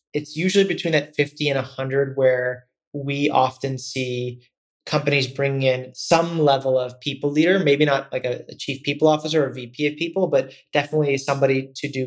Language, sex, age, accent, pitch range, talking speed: English, male, 30-49, American, 130-145 Hz, 180 wpm